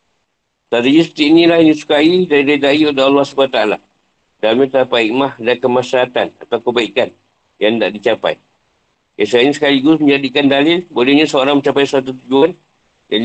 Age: 50-69